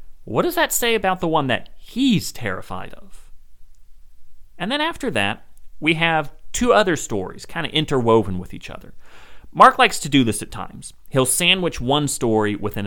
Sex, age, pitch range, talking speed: male, 40-59, 95-140 Hz, 175 wpm